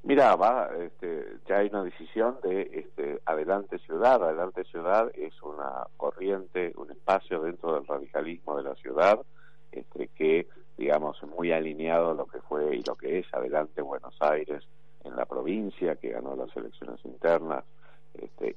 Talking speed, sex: 155 wpm, male